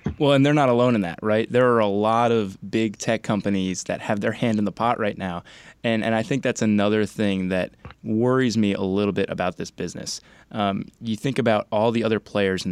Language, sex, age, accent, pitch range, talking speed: English, male, 20-39, American, 100-115 Hz, 235 wpm